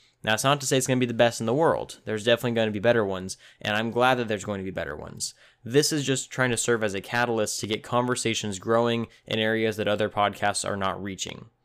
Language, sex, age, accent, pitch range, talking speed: English, male, 10-29, American, 105-120 Hz, 270 wpm